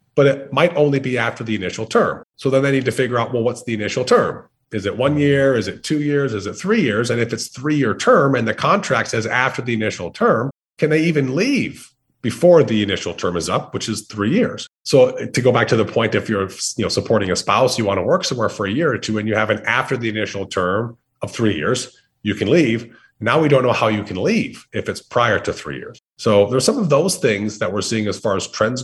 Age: 30-49